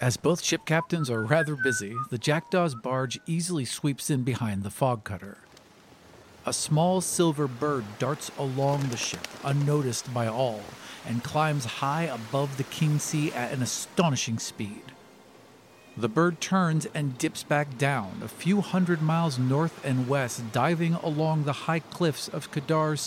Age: 50-69